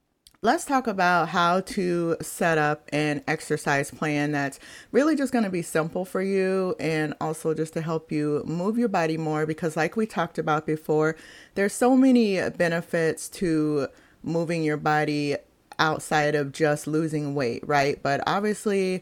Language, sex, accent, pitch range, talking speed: English, female, American, 150-175 Hz, 160 wpm